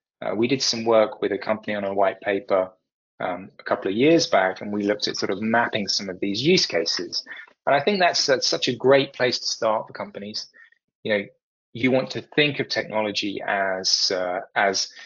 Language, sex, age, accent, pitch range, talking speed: English, male, 20-39, British, 100-120 Hz, 215 wpm